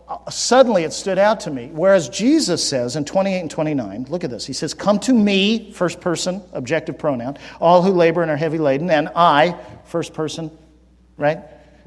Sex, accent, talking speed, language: male, American, 185 wpm, English